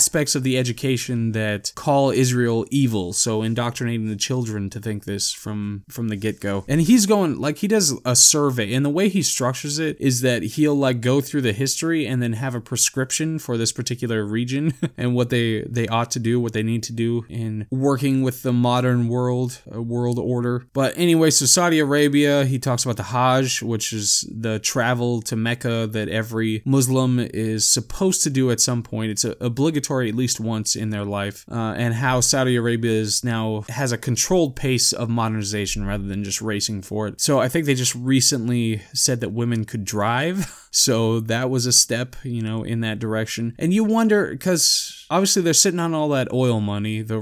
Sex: male